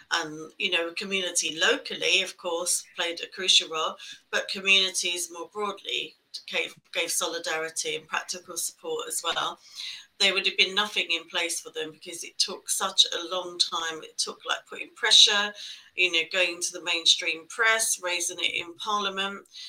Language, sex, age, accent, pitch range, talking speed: English, female, 40-59, British, 180-220 Hz, 165 wpm